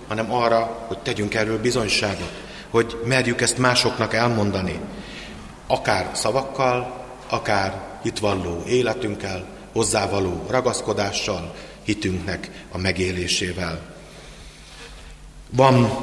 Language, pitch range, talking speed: Hungarian, 95-115 Hz, 80 wpm